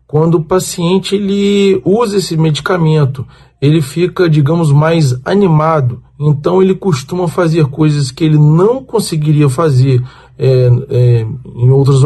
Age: 40-59